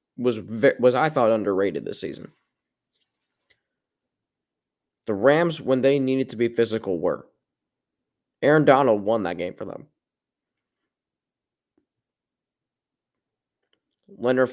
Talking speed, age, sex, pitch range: 100 wpm, 20-39, male, 115-130 Hz